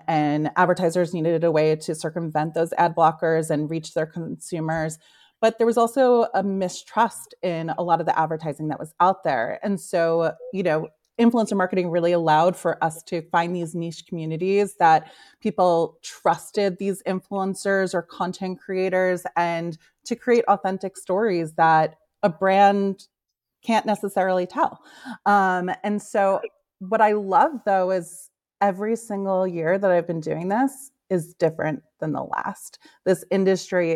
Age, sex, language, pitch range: 30-49, female, English, 165-195 Hz